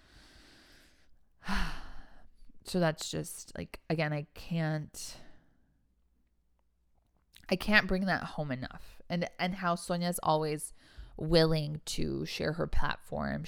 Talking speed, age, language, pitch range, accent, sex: 100 wpm, 20-39, English, 105-175 Hz, American, female